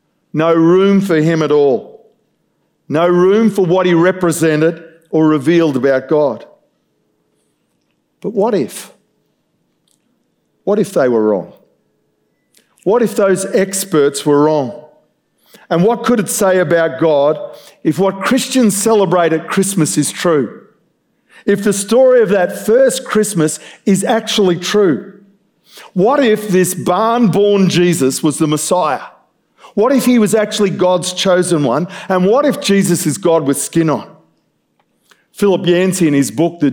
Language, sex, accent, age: English, male, Australian, 50-69